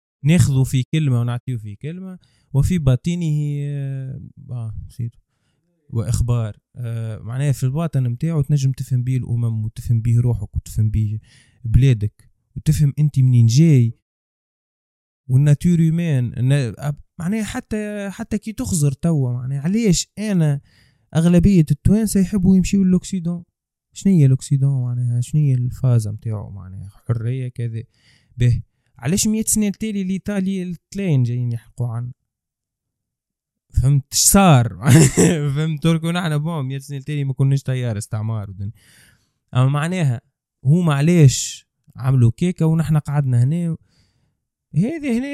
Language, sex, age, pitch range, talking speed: Arabic, male, 20-39, 120-160 Hz, 120 wpm